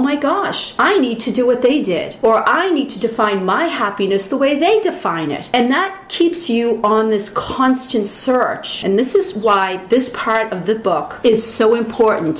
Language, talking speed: English, 200 wpm